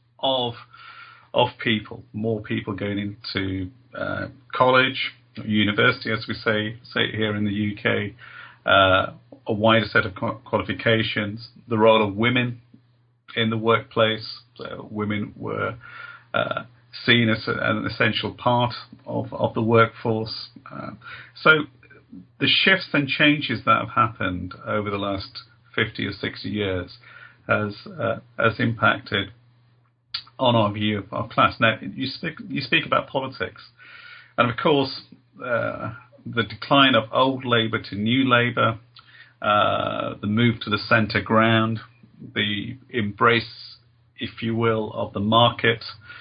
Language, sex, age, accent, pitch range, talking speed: English, male, 40-59, British, 110-120 Hz, 140 wpm